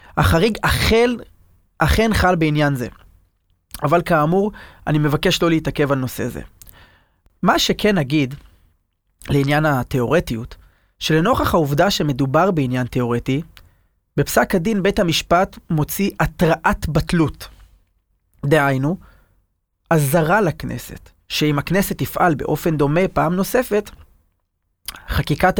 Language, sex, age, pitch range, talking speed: Hebrew, male, 30-49, 120-180 Hz, 100 wpm